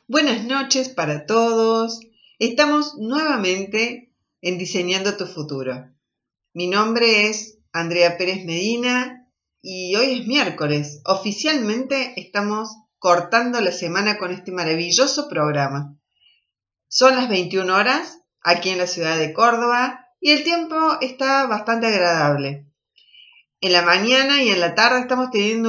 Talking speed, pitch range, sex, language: 125 wpm, 170-235 Hz, female, Spanish